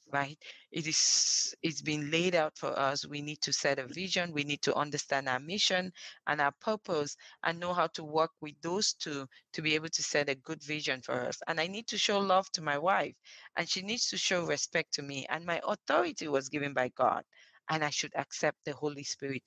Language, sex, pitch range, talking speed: English, female, 140-170 Hz, 225 wpm